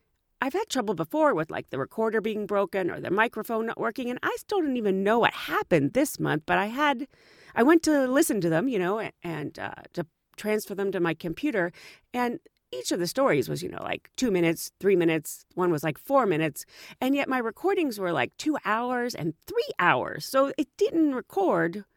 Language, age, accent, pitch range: English, 40-59, American, 185-285 Hz